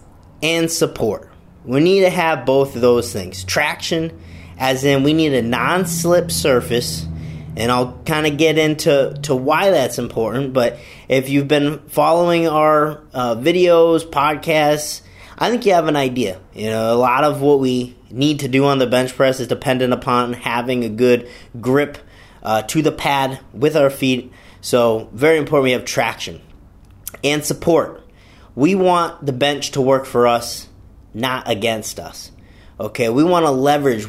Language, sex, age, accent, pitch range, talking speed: English, male, 30-49, American, 115-150 Hz, 165 wpm